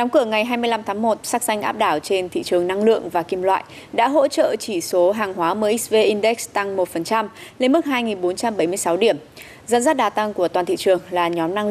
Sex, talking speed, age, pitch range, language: female, 225 wpm, 20-39, 185-240 Hz, Vietnamese